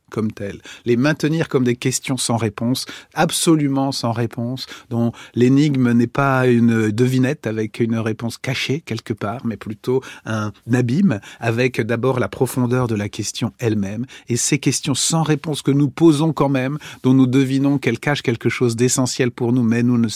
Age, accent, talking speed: 40-59, French, 175 wpm